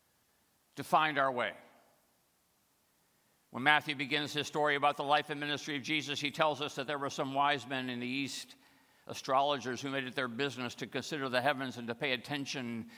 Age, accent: 60-79, American